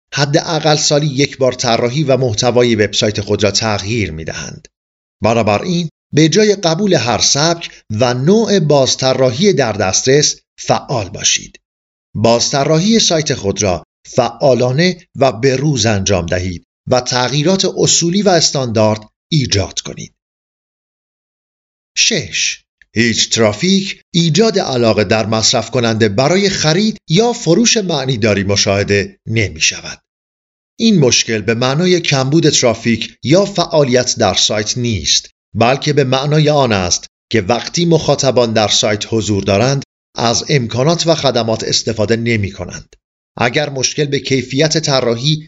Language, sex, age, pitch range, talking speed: Persian, male, 50-69, 110-155 Hz, 125 wpm